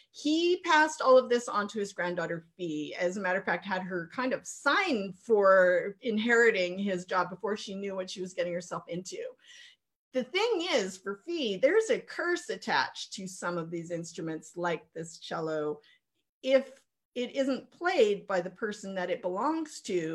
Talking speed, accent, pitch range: 180 wpm, American, 180-275 Hz